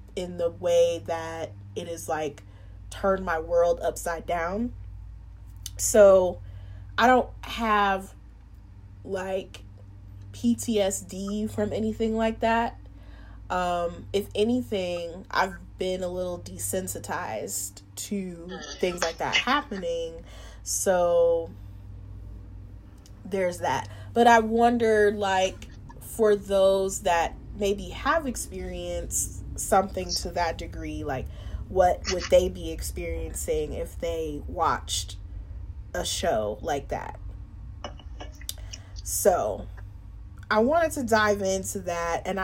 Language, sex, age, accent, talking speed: English, female, 20-39, American, 105 wpm